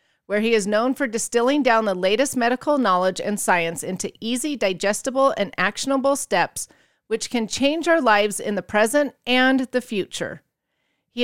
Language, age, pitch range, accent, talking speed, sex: English, 30-49, 215-280 Hz, American, 165 wpm, female